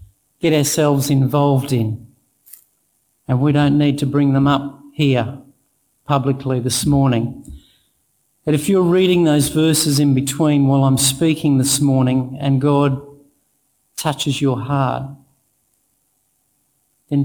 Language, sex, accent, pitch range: English, male, Australian, 130-145 Hz